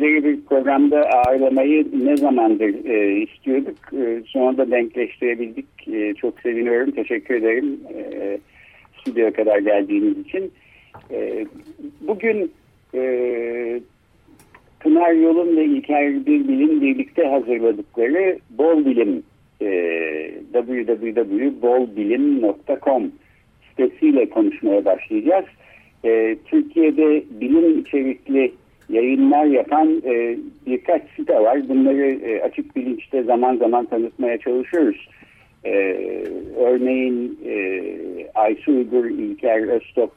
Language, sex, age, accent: Turkish, male, 60-79, native